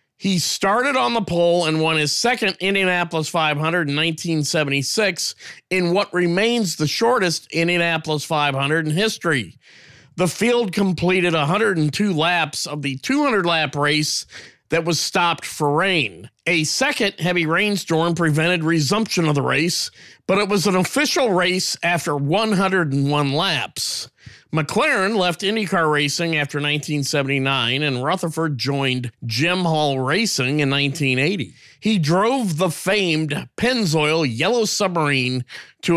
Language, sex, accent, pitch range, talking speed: English, male, American, 145-185 Hz, 125 wpm